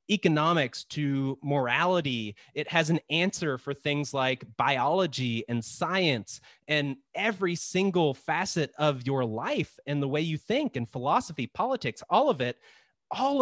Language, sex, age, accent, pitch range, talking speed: English, male, 30-49, American, 130-165 Hz, 145 wpm